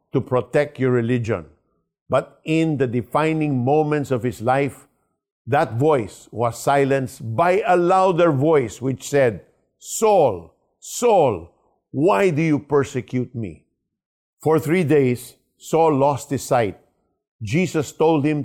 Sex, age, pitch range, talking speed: male, 50-69, 125-155 Hz, 125 wpm